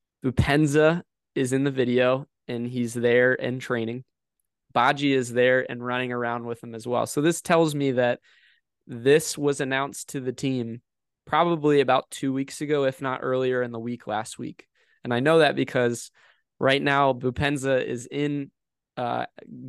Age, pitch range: 20-39, 120-140 Hz